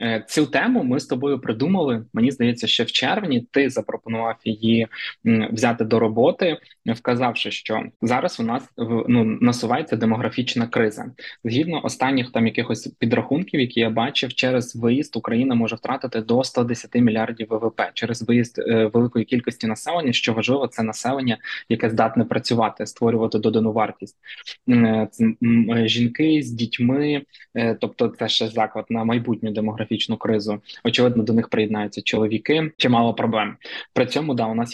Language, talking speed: Ukrainian, 140 wpm